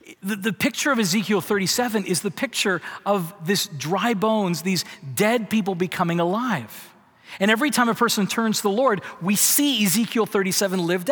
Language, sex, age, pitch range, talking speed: English, male, 40-59, 175-225 Hz, 165 wpm